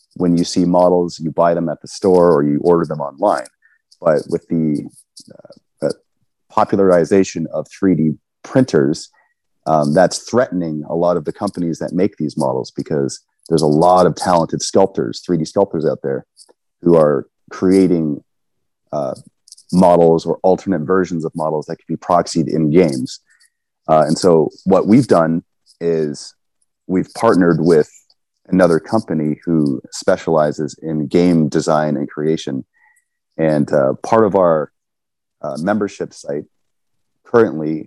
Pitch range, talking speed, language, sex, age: 75-90 Hz, 145 wpm, English, male, 30-49